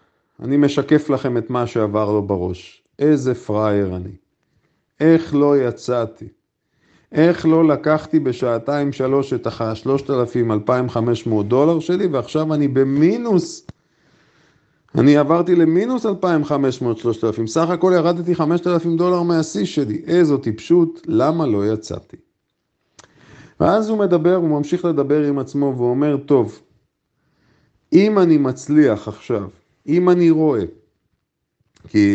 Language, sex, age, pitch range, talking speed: Hebrew, male, 50-69, 115-165 Hz, 110 wpm